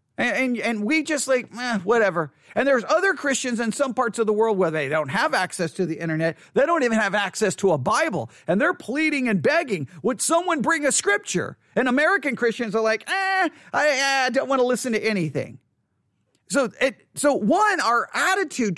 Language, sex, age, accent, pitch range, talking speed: English, male, 40-59, American, 175-260 Hz, 200 wpm